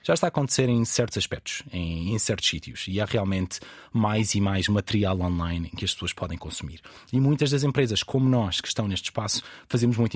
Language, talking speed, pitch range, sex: Portuguese, 220 wpm, 95-125 Hz, male